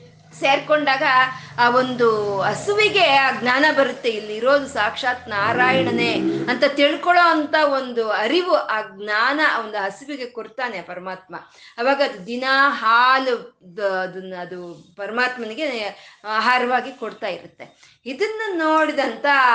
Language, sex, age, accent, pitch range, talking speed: Kannada, female, 20-39, native, 205-280 Hz, 90 wpm